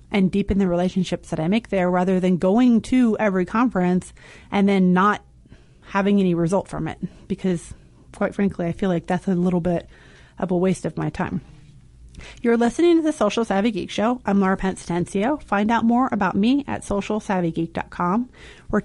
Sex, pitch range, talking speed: female, 180-215 Hz, 180 wpm